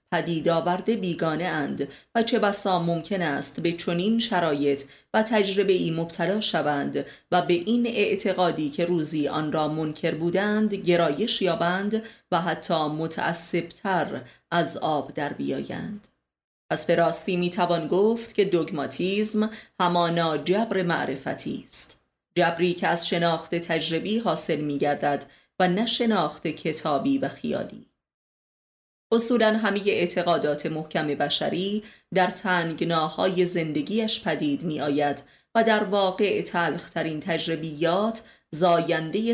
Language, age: Persian, 30-49